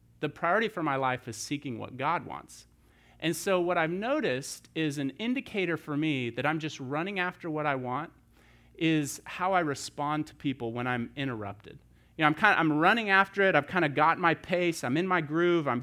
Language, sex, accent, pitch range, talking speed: English, male, American, 125-160 Hz, 215 wpm